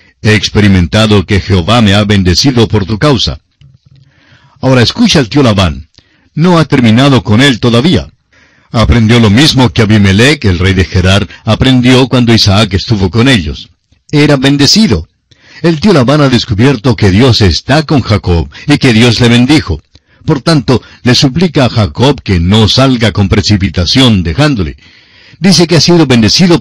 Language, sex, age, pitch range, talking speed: Spanish, male, 60-79, 100-135 Hz, 160 wpm